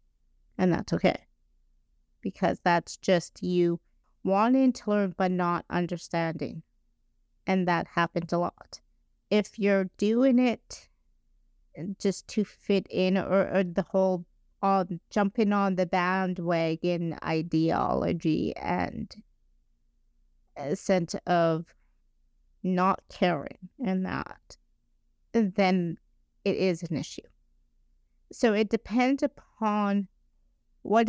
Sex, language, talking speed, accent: female, English, 105 wpm, American